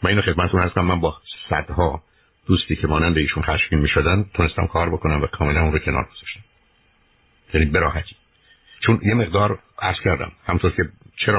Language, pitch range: Persian, 80-100 Hz